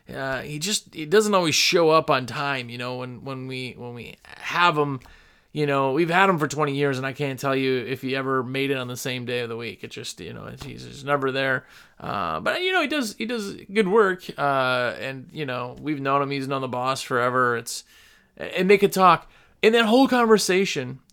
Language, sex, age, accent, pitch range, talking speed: English, male, 30-49, American, 140-205 Hz, 235 wpm